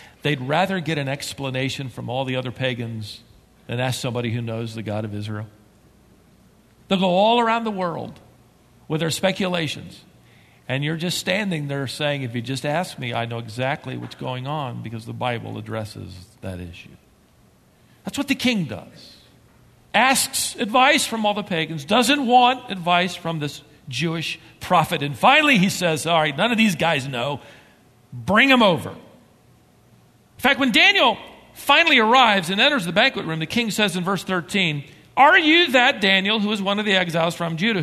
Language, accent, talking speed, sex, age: English, American, 180 wpm, male, 50-69